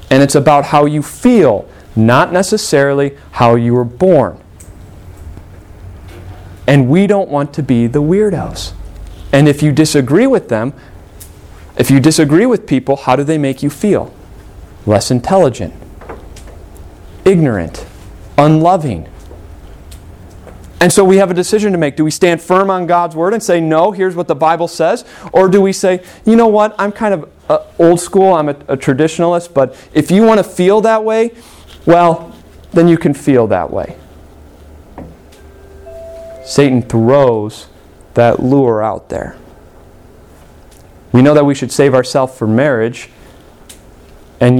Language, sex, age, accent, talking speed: English, male, 30-49, American, 150 wpm